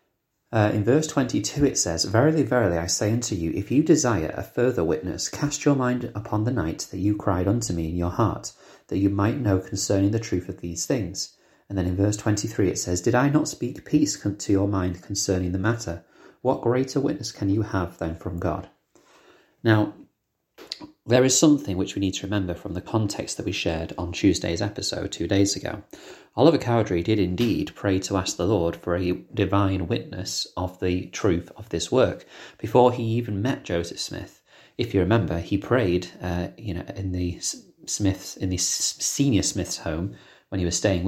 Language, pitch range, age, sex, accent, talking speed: English, 90-115 Hz, 30-49, male, British, 195 wpm